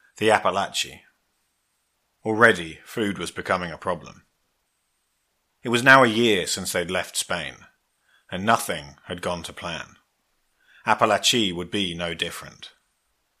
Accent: British